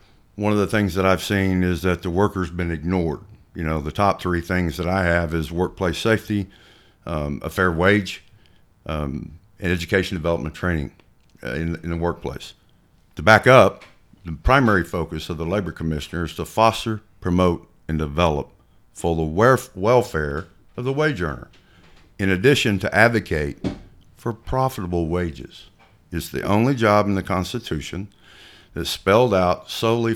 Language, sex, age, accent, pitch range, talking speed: English, male, 50-69, American, 85-110 Hz, 160 wpm